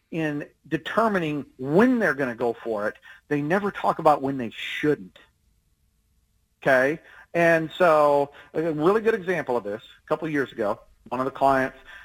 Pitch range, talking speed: 145-200 Hz, 170 wpm